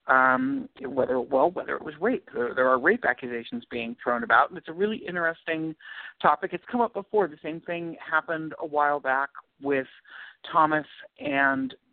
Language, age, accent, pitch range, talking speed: English, 50-69, American, 130-180 Hz, 175 wpm